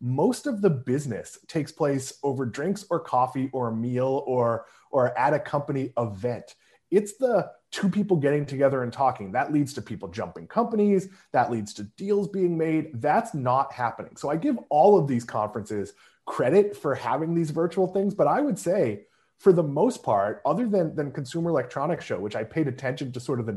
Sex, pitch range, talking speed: male, 120-170 Hz, 195 wpm